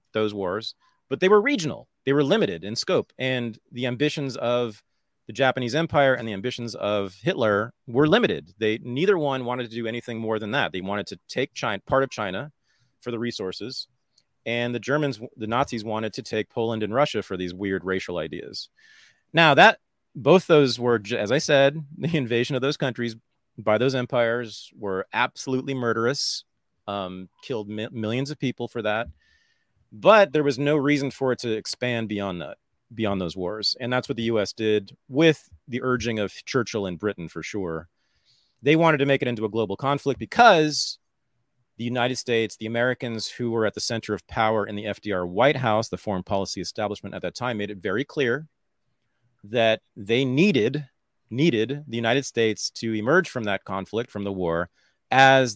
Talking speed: 185 wpm